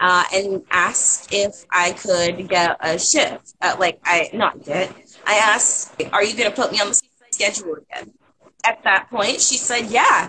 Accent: American